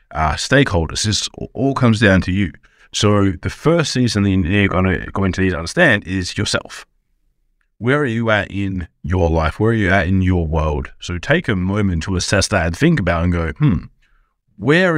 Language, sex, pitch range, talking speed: English, male, 90-110 Hz, 205 wpm